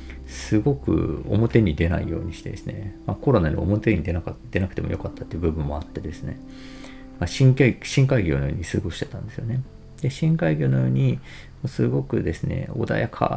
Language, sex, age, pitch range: Japanese, male, 40-59, 85-130 Hz